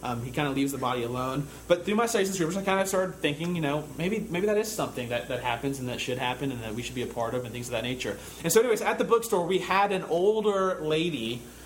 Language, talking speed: English, 295 wpm